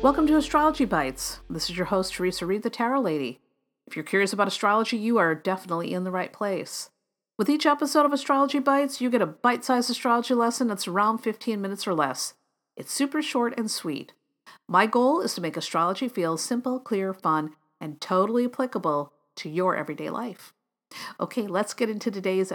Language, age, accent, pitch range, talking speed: English, 50-69, American, 170-245 Hz, 185 wpm